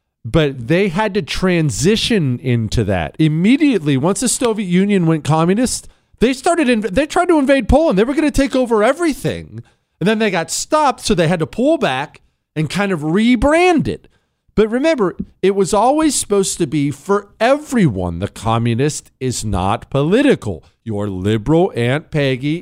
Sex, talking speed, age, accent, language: male, 170 wpm, 40-59, American, English